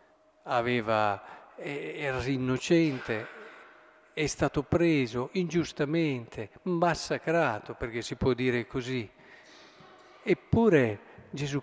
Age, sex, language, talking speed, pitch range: 50-69, male, Italian, 70 wpm, 120-160 Hz